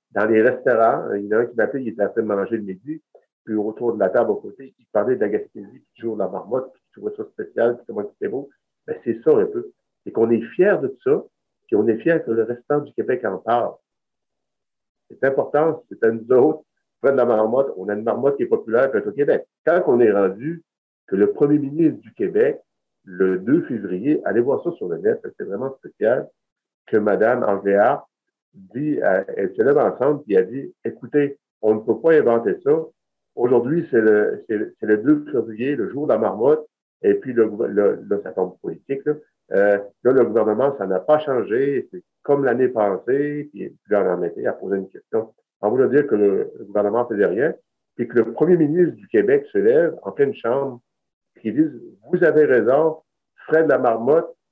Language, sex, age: French, male, 50-69